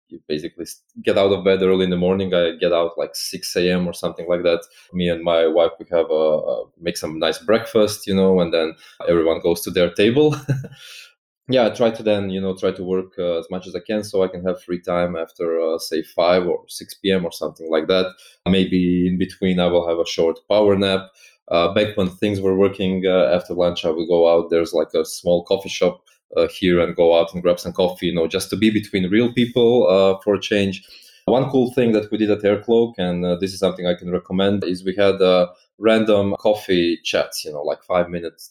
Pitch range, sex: 90-105 Hz, male